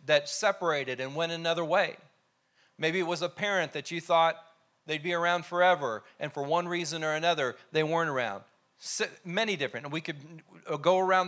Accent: American